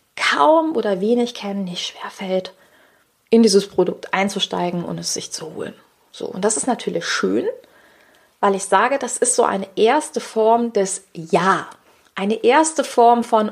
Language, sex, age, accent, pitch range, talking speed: German, female, 30-49, German, 185-240 Hz, 165 wpm